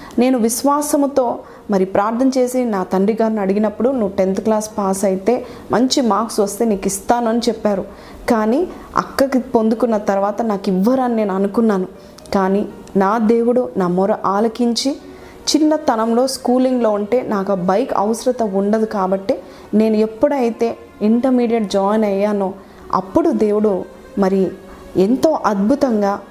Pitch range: 200-255 Hz